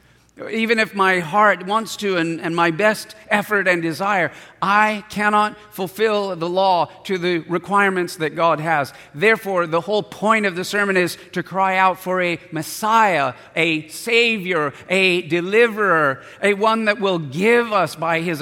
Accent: American